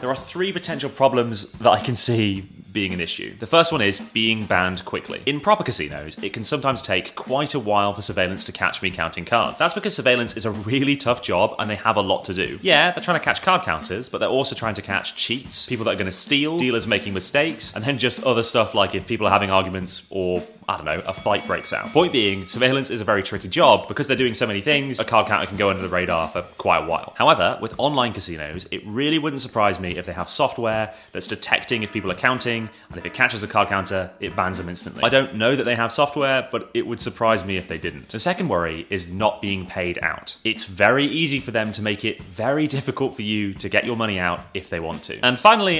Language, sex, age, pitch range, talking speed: Vietnamese, male, 20-39, 95-130 Hz, 255 wpm